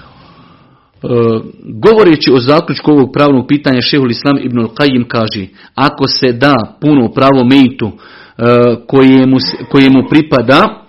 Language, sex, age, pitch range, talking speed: Croatian, male, 40-59, 125-145 Hz, 110 wpm